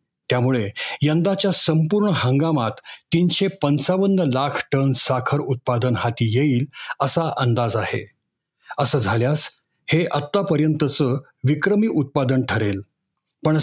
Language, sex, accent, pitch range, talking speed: Marathi, male, native, 125-160 Hz, 100 wpm